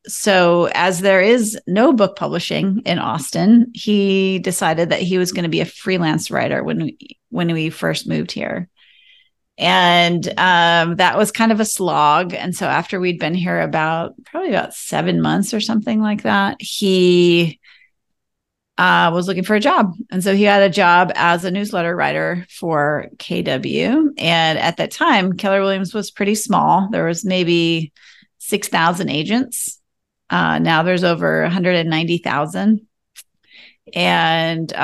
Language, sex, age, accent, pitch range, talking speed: English, female, 30-49, American, 165-200 Hz, 150 wpm